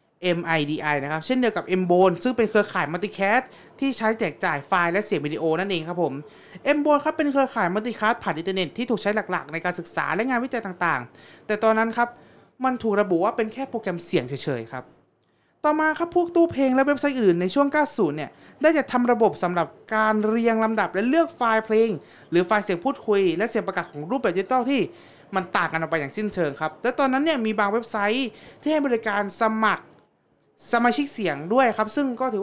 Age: 20-39